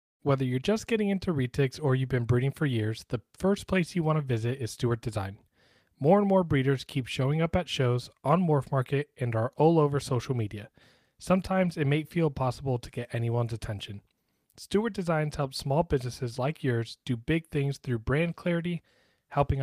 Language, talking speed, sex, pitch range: English, 195 wpm, male, 125-155 Hz